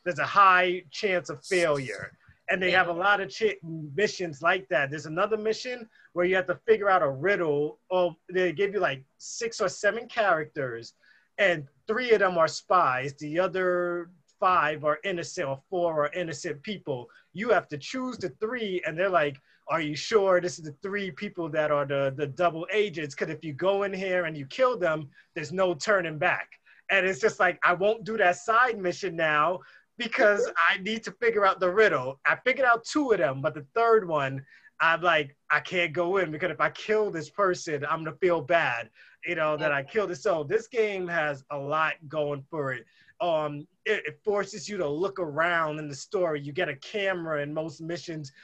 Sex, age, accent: male, 30-49, American